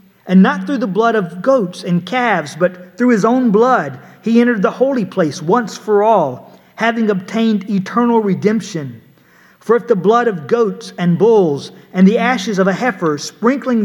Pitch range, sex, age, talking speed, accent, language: 185-235 Hz, male, 50-69, 180 wpm, American, English